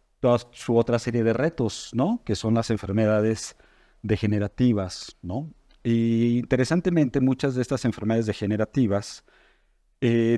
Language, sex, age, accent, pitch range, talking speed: Spanish, male, 50-69, Mexican, 105-130 Hz, 120 wpm